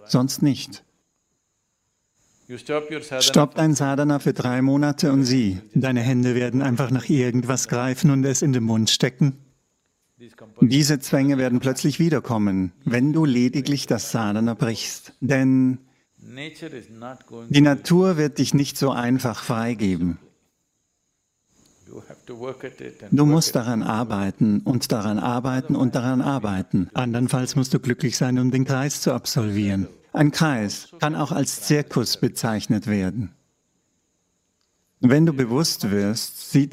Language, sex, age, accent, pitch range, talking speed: English, male, 50-69, German, 120-145 Hz, 125 wpm